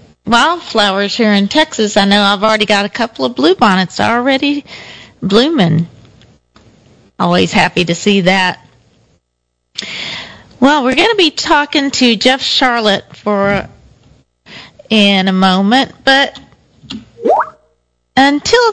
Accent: American